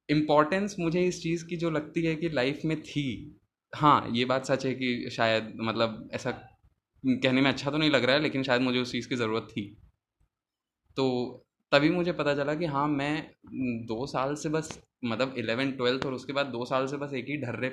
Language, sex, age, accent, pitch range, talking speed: Hindi, male, 20-39, native, 110-140 Hz, 210 wpm